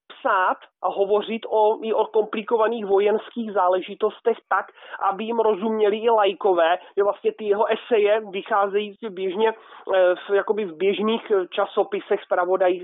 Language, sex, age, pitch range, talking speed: Slovak, male, 30-49, 195-225 Hz, 105 wpm